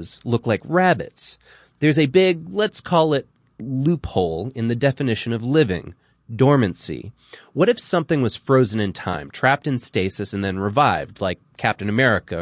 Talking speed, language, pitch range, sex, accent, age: 155 wpm, English, 110-150 Hz, male, American, 20-39